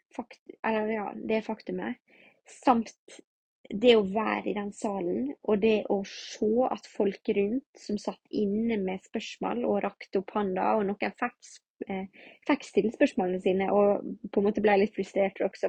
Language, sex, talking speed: English, female, 155 wpm